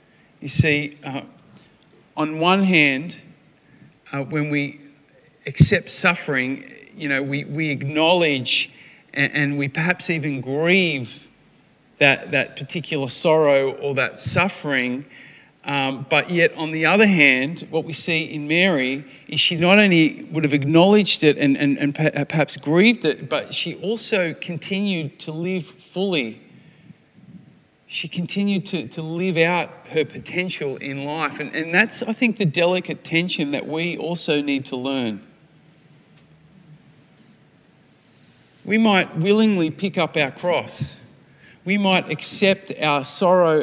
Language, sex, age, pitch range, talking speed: English, male, 40-59, 145-180 Hz, 135 wpm